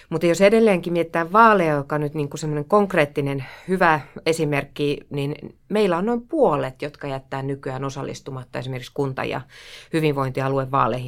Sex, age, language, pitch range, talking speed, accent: female, 30-49, Finnish, 135-175 Hz, 140 wpm, native